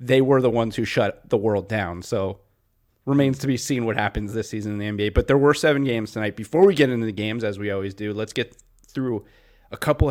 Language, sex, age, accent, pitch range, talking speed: English, male, 30-49, American, 105-135 Hz, 250 wpm